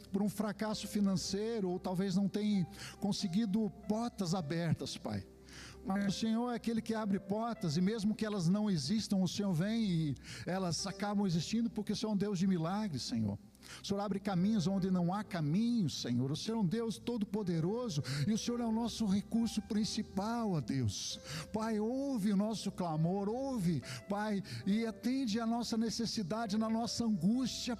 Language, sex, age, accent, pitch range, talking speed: Portuguese, male, 60-79, Brazilian, 190-230 Hz, 180 wpm